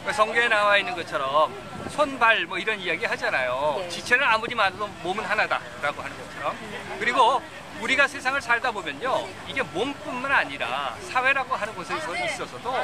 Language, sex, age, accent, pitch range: Korean, male, 40-59, native, 210-290 Hz